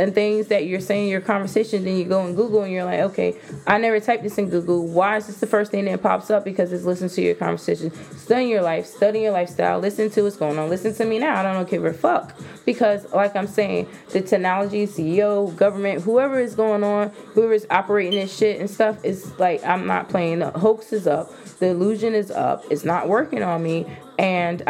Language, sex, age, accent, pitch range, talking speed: English, female, 20-39, American, 160-205 Hz, 235 wpm